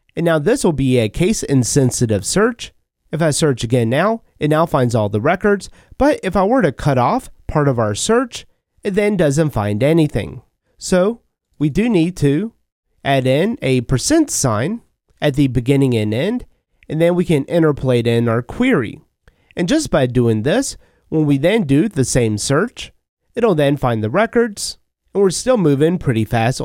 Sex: male